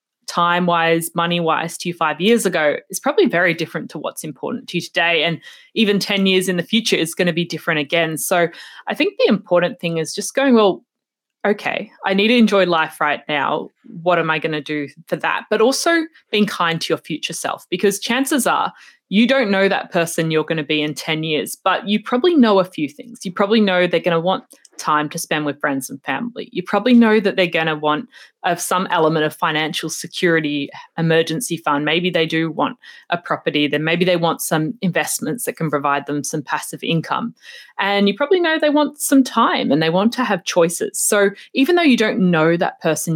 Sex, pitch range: female, 160-215 Hz